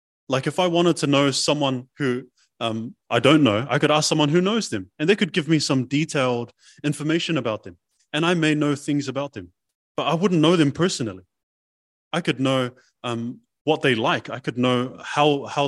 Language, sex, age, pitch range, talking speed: English, male, 20-39, 105-150 Hz, 205 wpm